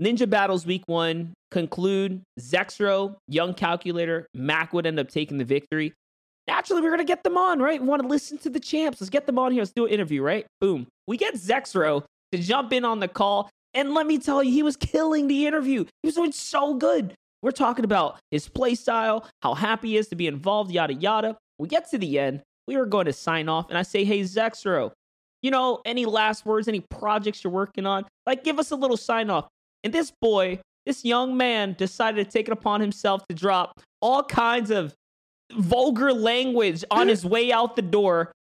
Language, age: English, 30-49